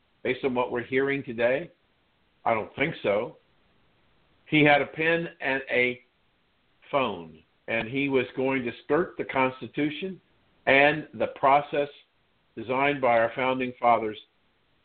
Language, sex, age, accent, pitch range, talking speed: English, male, 50-69, American, 120-145 Hz, 135 wpm